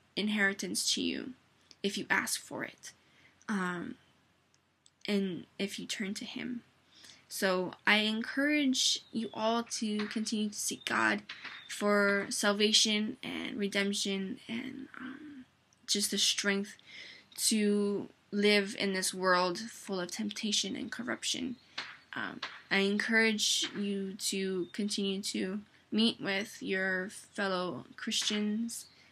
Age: 10-29